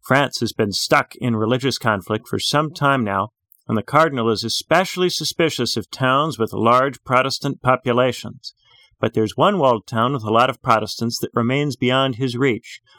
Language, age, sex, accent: English, 40-59, male, American